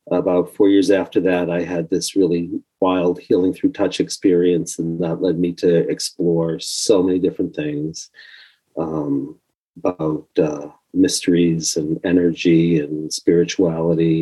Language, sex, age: English, male, 40-59